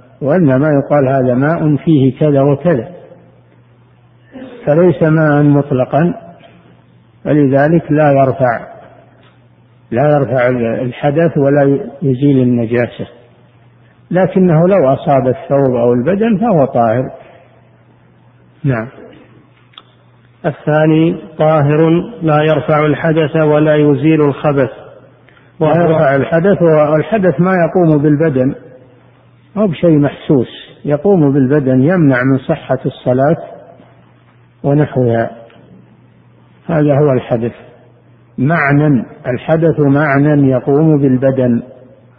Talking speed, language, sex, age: 85 wpm, Arabic, male, 50-69